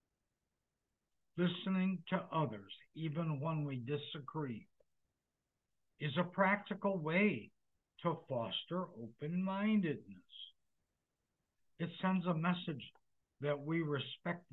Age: 60-79